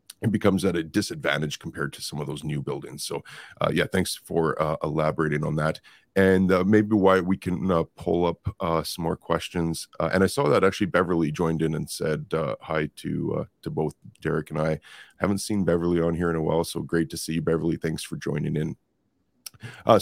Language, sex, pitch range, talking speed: English, male, 80-95 Hz, 220 wpm